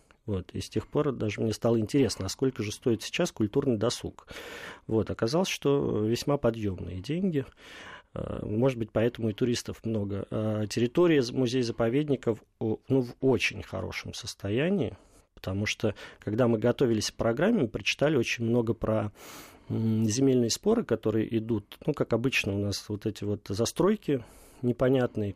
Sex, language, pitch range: male, Russian, 110-135 Hz